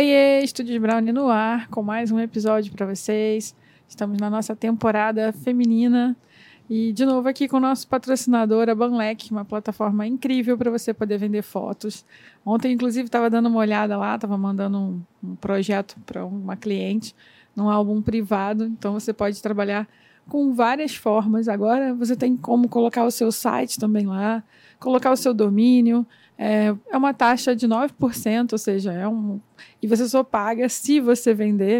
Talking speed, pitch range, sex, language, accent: 170 wpm, 210-240 Hz, female, Portuguese, Brazilian